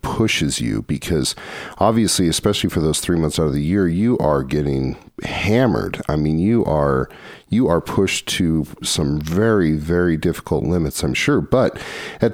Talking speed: 165 wpm